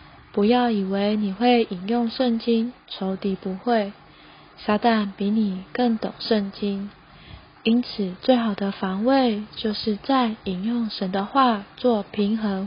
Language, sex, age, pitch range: Chinese, female, 20-39, 205-245 Hz